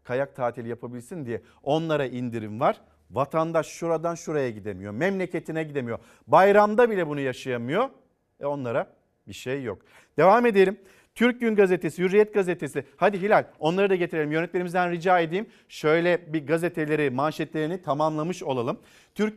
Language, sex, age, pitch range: Turkish, male, 40-59, 150-190 Hz